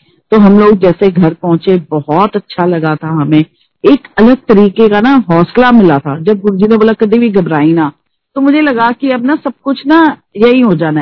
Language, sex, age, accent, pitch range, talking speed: Hindi, female, 40-59, native, 180-250 Hz, 210 wpm